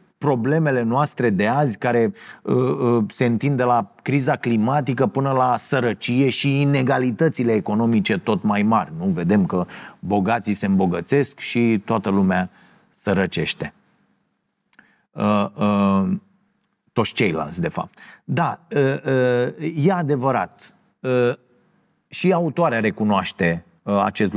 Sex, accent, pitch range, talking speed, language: male, native, 120-165 Hz, 100 wpm, Romanian